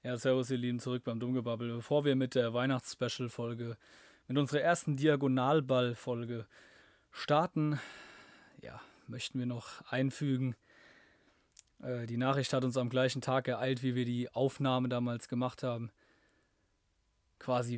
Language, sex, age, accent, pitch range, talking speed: German, male, 20-39, German, 120-140 Hz, 135 wpm